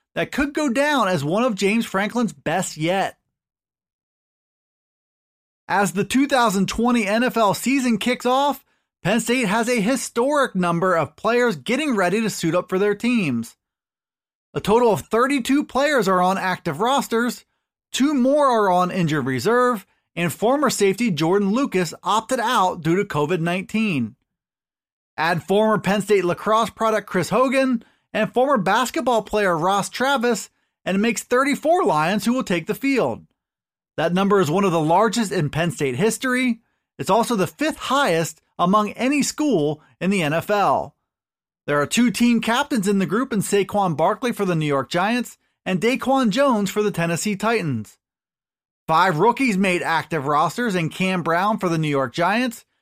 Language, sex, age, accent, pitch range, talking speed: English, male, 30-49, American, 180-245 Hz, 160 wpm